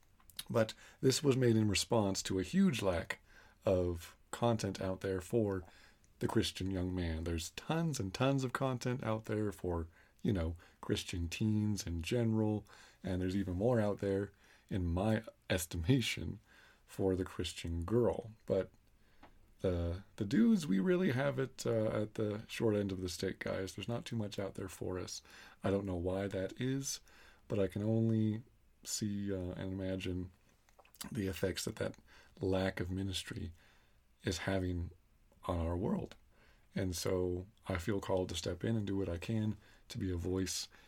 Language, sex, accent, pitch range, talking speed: English, male, American, 90-115 Hz, 170 wpm